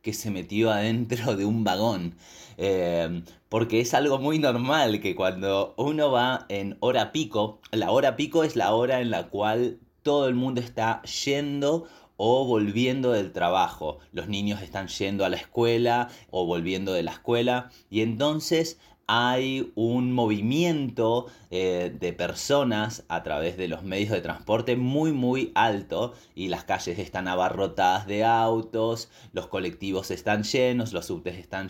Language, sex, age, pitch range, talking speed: Spanish, male, 30-49, 100-140 Hz, 155 wpm